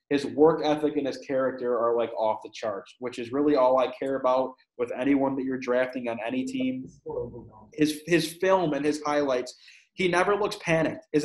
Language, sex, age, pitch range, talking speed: English, male, 20-39, 130-160 Hz, 195 wpm